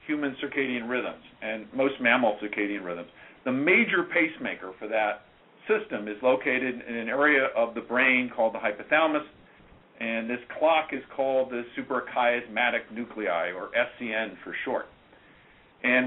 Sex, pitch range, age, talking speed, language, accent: male, 125-160 Hz, 50-69, 140 wpm, English, American